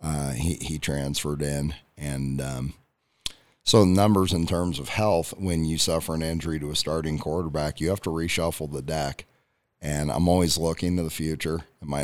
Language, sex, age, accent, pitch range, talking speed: English, male, 40-59, American, 75-85 Hz, 185 wpm